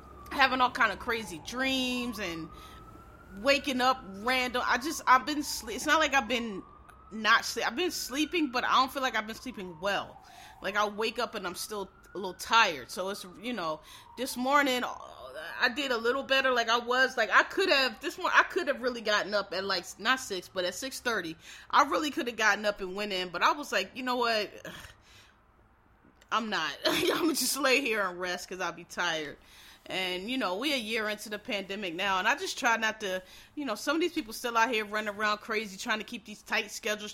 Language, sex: English, female